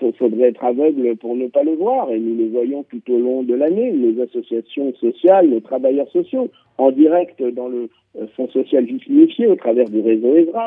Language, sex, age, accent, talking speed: French, male, 50-69, French, 200 wpm